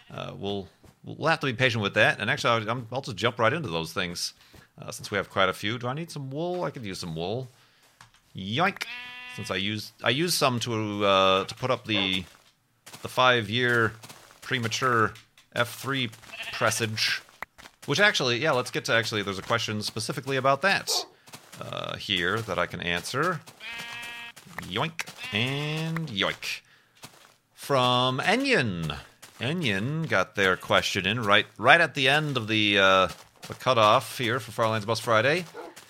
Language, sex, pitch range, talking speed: English, male, 105-150 Hz, 165 wpm